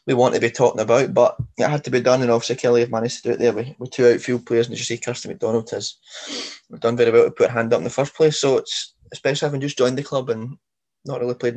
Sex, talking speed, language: male, 295 wpm, English